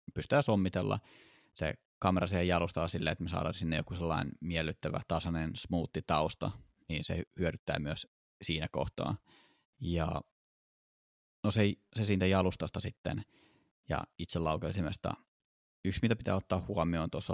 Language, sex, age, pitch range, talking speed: Finnish, male, 20-39, 80-95 Hz, 130 wpm